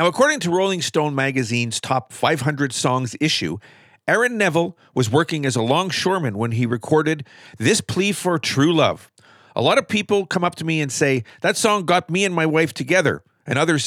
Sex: male